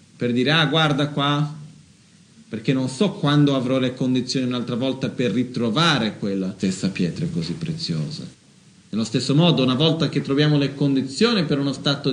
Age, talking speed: 40-59, 165 wpm